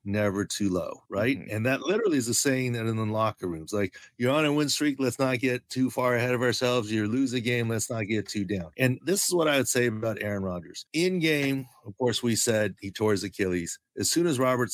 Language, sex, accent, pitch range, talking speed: English, male, American, 115-145 Hz, 255 wpm